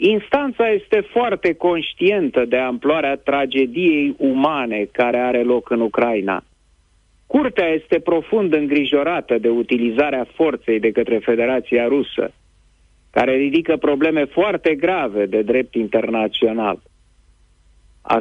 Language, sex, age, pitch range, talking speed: Romanian, male, 40-59, 110-175 Hz, 110 wpm